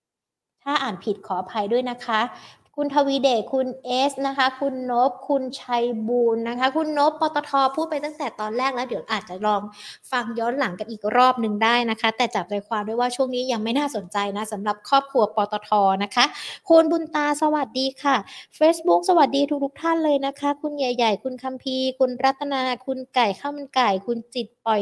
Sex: female